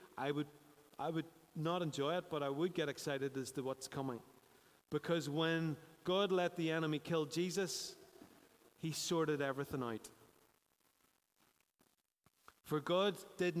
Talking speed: 135 wpm